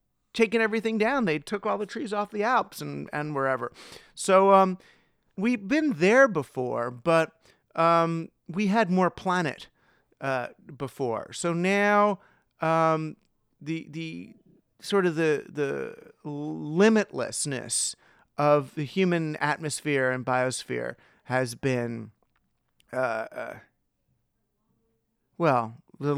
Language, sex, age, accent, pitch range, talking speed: English, male, 40-59, American, 130-175 Hz, 115 wpm